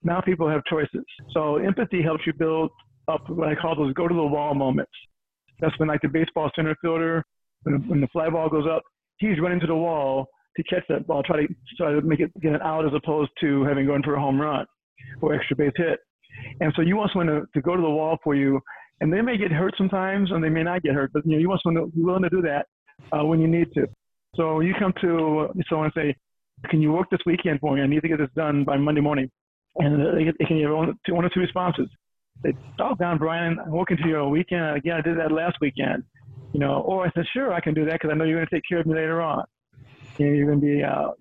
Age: 40-59